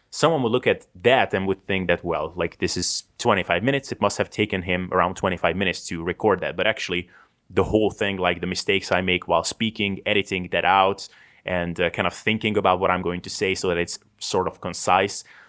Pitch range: 90-100 Hz